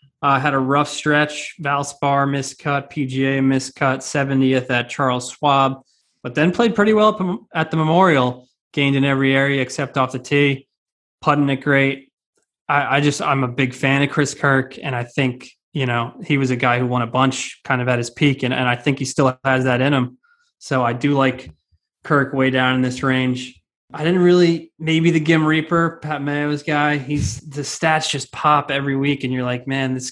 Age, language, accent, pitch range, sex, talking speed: 20-39, English, American, 130-145 Hz, male, 205 wpm